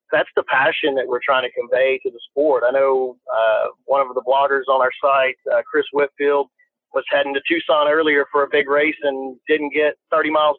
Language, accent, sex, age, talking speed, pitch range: English, American, male, 40-59, 215 wpm, 130-160 Hz